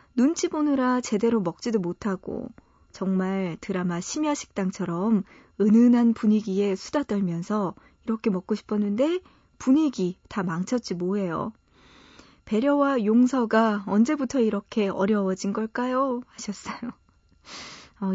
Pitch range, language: 195-250 Hz, Korean